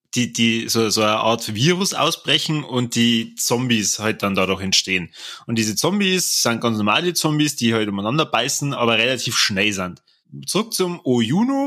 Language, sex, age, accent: German, male, 20-39, German